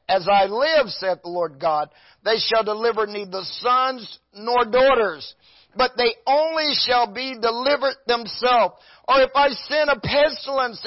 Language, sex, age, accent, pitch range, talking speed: English, male, 50-69, American, 210-285 Hz, 150 wpm